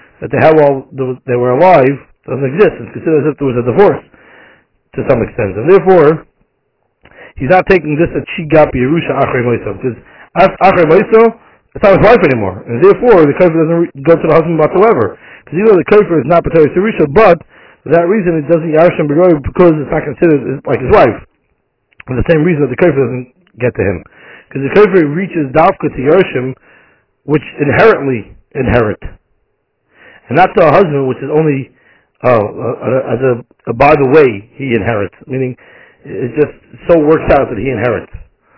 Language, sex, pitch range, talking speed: English, male, 125-160 Hz, 185 wpm